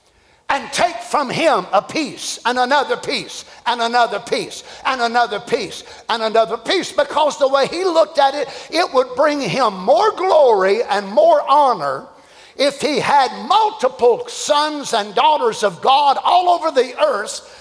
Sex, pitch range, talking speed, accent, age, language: male, 225-330 Hz, 160 wpm, American, 50-69, English